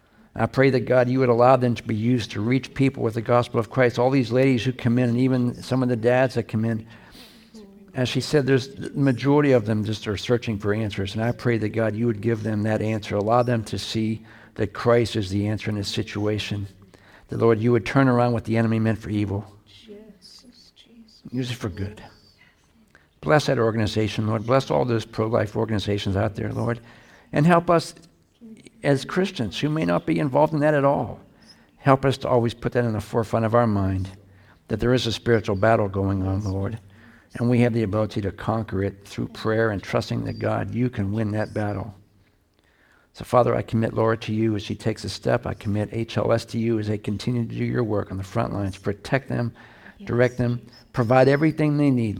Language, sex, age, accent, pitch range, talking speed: English, male, 60-79, American, 105-125 Hz, 215 wpm